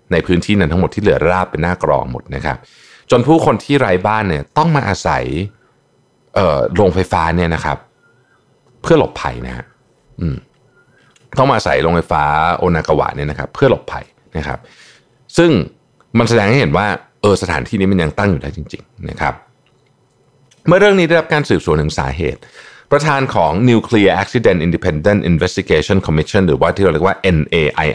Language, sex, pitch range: Thai, male, 75-115 Hz